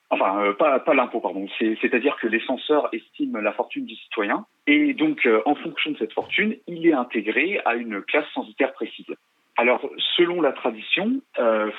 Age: 40-59